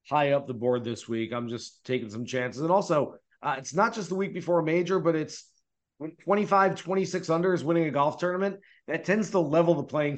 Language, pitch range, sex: English, 135-180 Hz, male